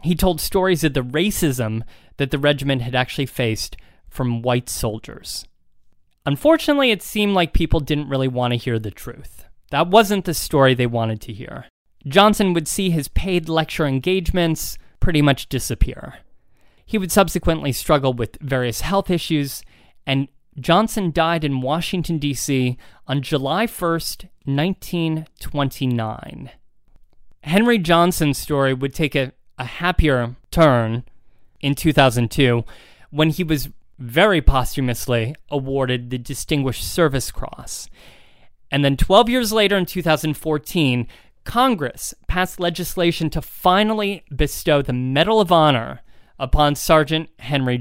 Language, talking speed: English, 130 wpm